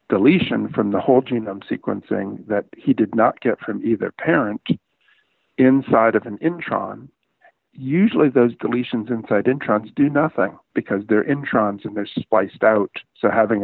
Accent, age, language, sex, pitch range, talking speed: American, 50-69, English, male, 105-130 Hz, 150 wpm